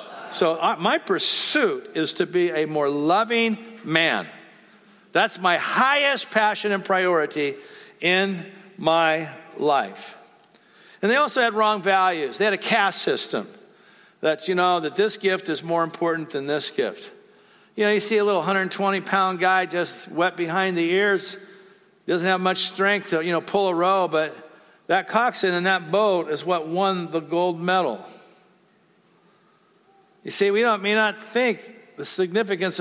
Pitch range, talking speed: 170-205 Hz, 155 wpm